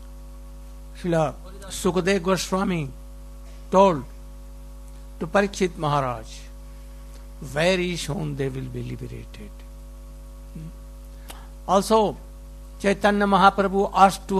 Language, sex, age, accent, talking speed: Russian, male, 60-79, Indian, 75 wpm